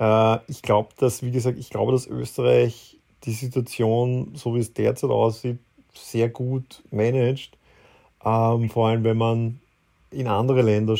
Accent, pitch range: German, 110-125 Hz